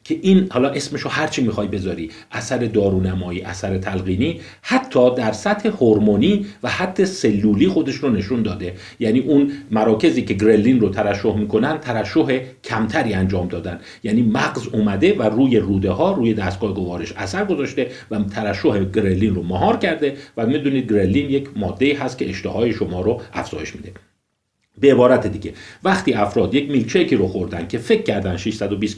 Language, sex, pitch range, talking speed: Persian, male, 100-140 Hz, 160 wpm